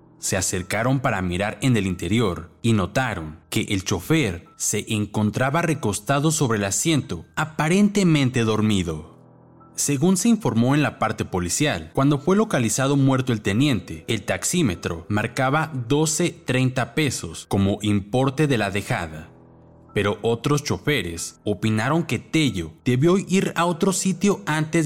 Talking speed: 135 wpm